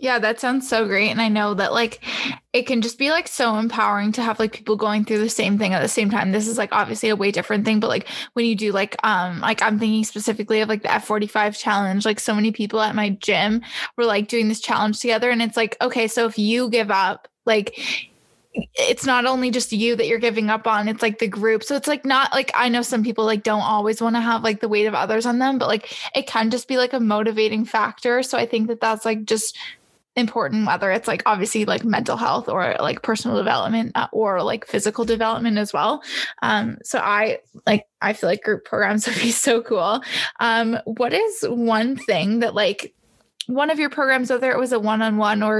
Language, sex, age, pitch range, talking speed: English, female, 10-29, 215-240 Hz, 235 wpm